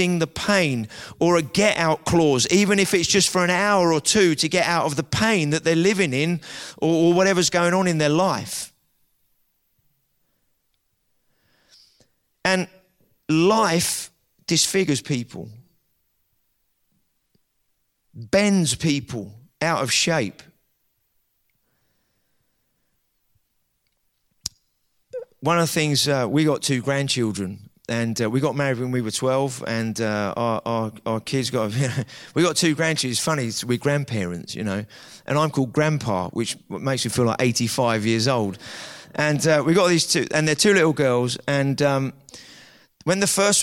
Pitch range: 120-165 Hz